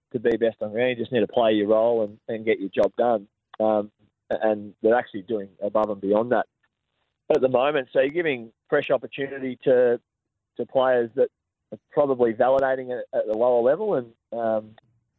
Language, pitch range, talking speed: English, 110-135 Hz, 200 wpm